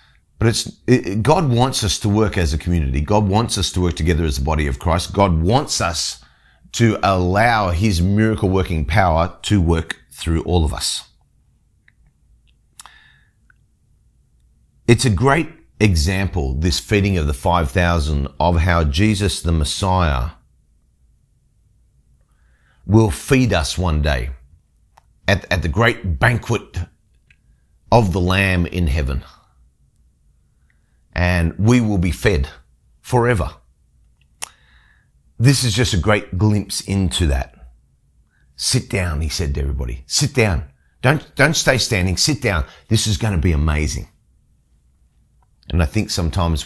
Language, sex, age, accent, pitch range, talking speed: English, male, 40-59, Australian, 75-105 Hz, 135 wpm